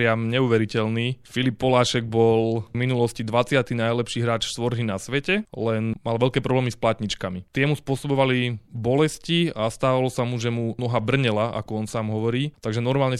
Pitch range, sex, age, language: 115-140 Hz, male, 20-39, Slovak